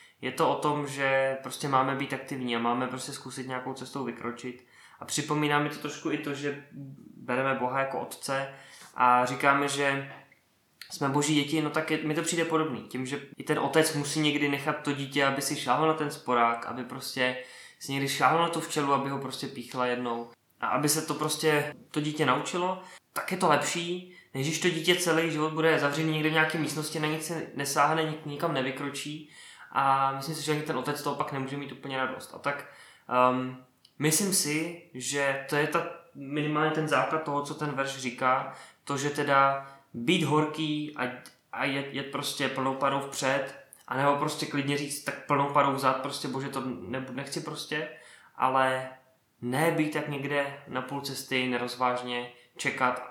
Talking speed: 190 wpm